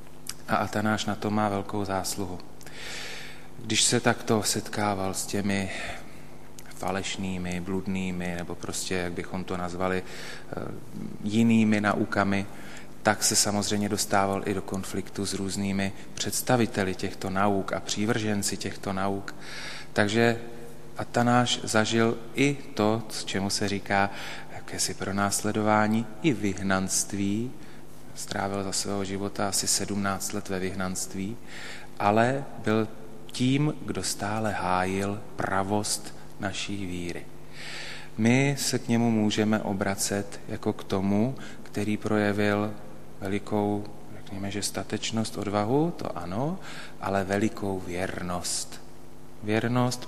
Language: Slovak